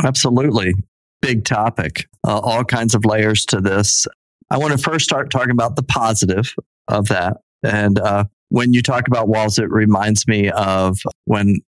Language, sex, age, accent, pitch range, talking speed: English, male, 40-59, American, 100-120 Hz, 170 wpm